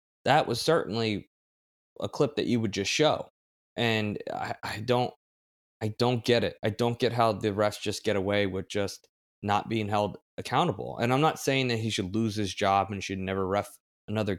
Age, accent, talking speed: 20-39, American, 190 wpm